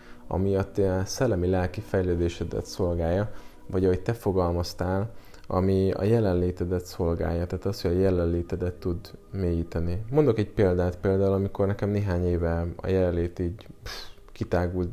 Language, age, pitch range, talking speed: Hungarian, 20-39, 90-100 Hz, 135 wpm